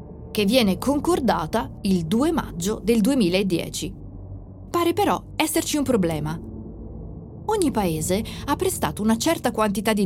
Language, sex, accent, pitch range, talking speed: Italian, female, native, 180-265 Hz, 125 wpm